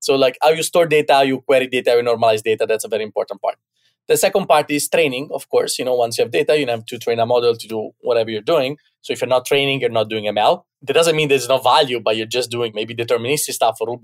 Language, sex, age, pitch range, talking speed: English, male, 20-39, 120-165 Hz, 285 wpm